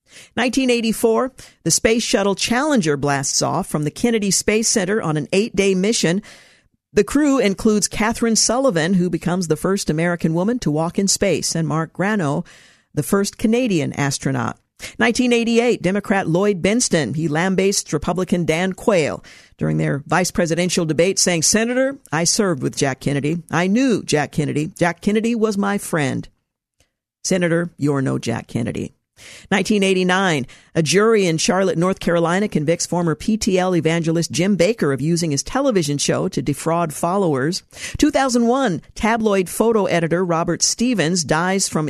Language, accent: English, American